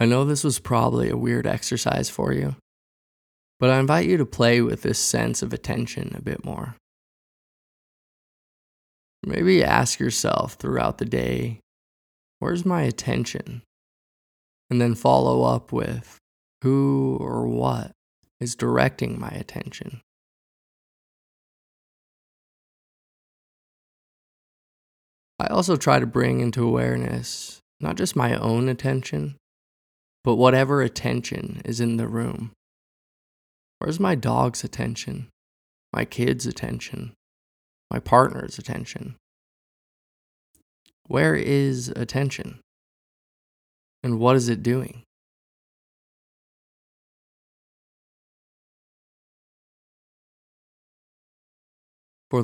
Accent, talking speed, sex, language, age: American, 95 wpm, male, English, 20-39